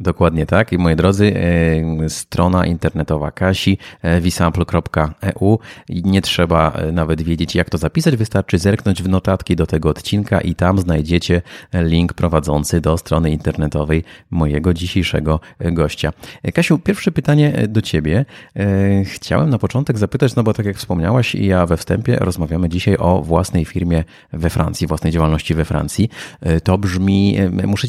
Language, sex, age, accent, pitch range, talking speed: Polish, male, 30-49, native, 85-110 Hz, 140 wpm